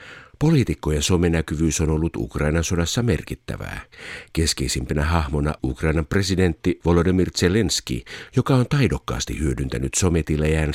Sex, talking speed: male, 100 wpm